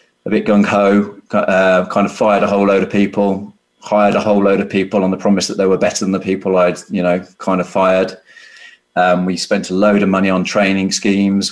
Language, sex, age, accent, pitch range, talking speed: English, male, 30-49, British, 90-105 Hz, 235 wpm